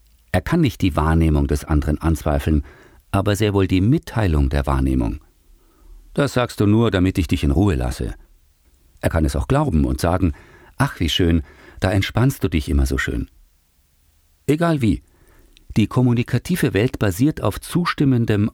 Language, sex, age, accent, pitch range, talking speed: German, male, 50-69, German, 80-115 Hz, 160 wpm